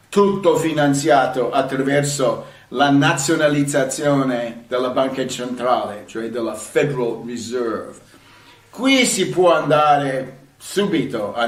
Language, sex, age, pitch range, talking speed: Italian, male, 50-69, 130-165 Hz, 95 wpm